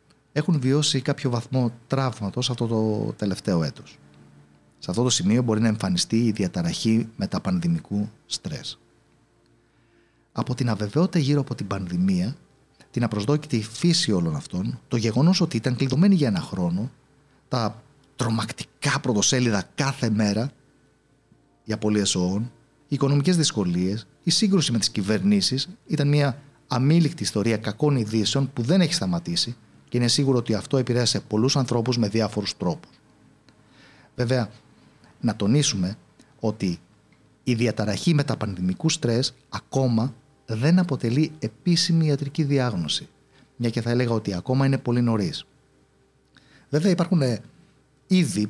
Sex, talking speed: male, 130 wpm